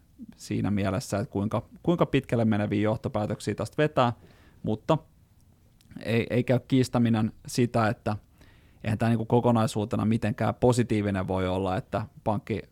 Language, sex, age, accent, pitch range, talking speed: Finnish, male, 30-49, native, 105-125 Hz, 125 wpm